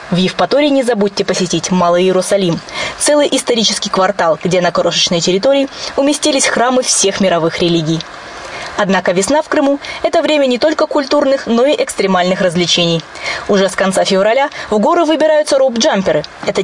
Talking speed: 155 wpm